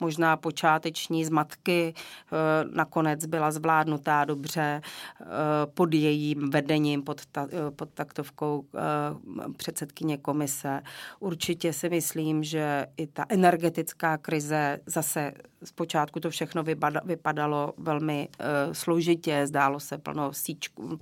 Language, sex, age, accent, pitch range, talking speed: Czech, female, 40-59, native, 145-165 Hz, 105 wpm